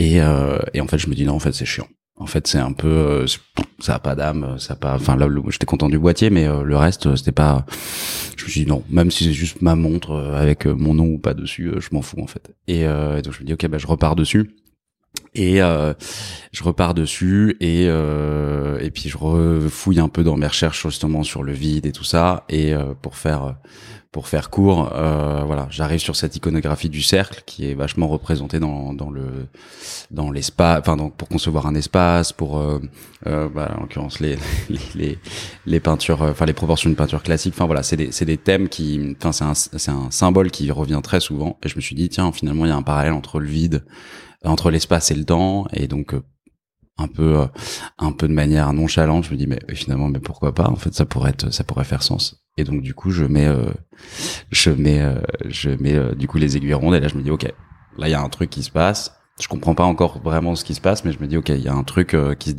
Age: 20-39